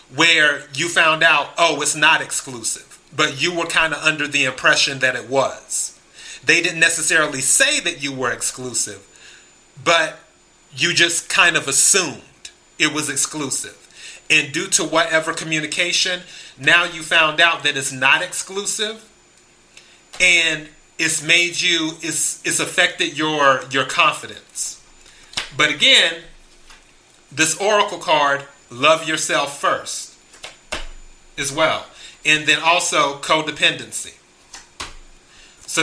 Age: 30-49